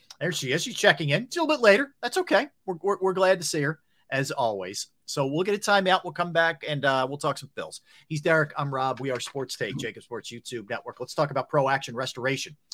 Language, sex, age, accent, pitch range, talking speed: English, male, 40-59, American, 125-155 Hz, 260 wpm